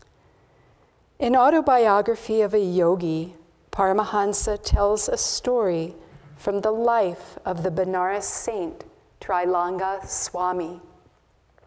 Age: 50-69